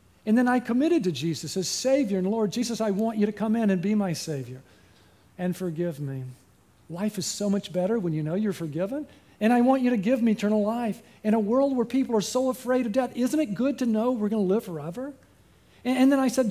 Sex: male